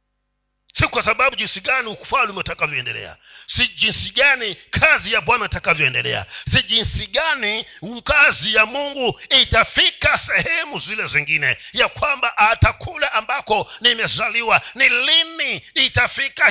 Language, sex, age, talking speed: Swahili, male, 50-69, 115 wpm